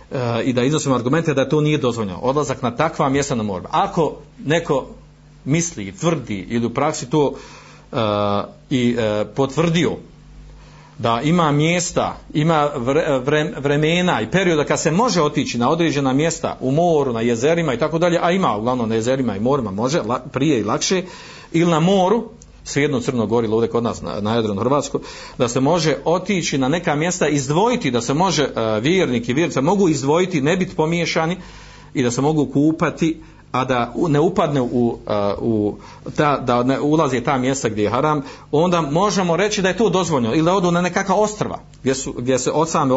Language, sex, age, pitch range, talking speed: Croatian, male, 50-69, 120-160 Hz, 185 wpm